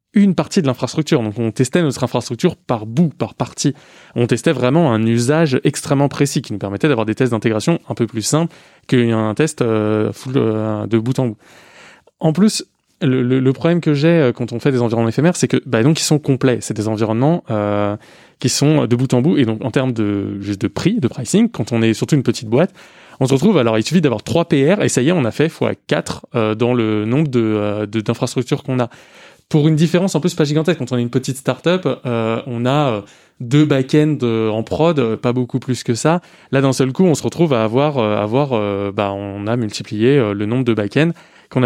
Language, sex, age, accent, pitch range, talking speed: French, male, 20-39, French, 115-150 Hz, 235 wpm